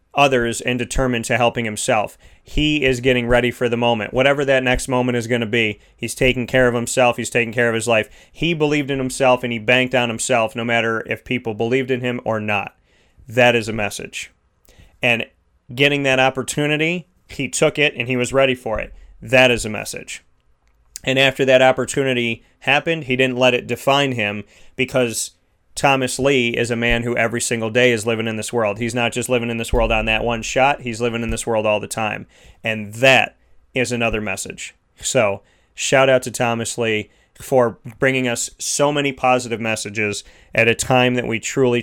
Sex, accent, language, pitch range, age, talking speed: male, American, English, 115-130 Hz, 30-49, 200 wpm